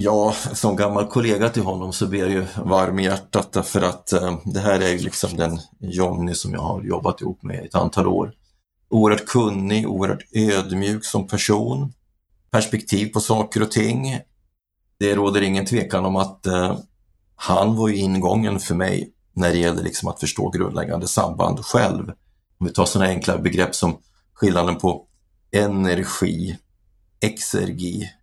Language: Swedish